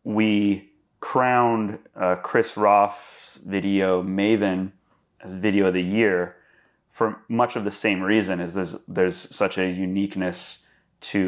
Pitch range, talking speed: 95-110 Hz, 135 wpm